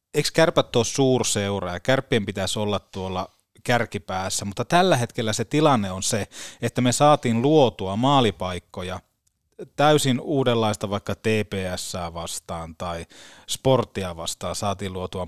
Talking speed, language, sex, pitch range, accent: 125 wpm, Finnish, male, 95-130 Hz, native